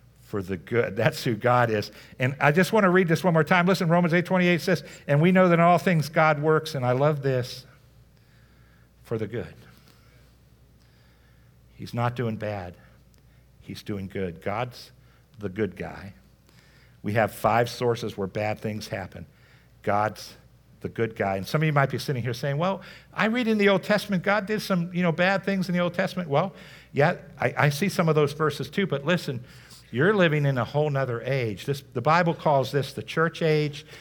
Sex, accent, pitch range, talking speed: male, American, 125-175 Hz, 205 wpm